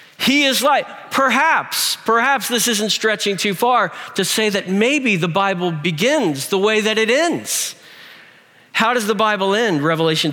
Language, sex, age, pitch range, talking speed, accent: English, male, 50-69, 130-185 Hz, 165 wpm, American